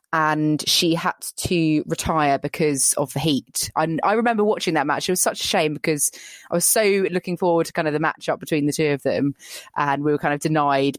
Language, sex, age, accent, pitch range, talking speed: English, female, 20-39, British, 150-175 Hz, 230 wpm